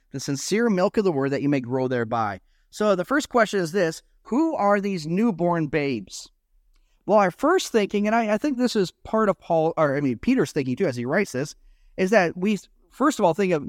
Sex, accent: male, American